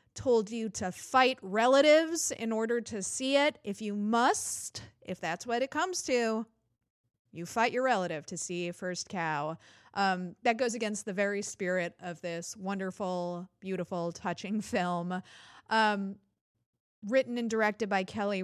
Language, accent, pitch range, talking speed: English, American, 185-250 Hz, 150 wpm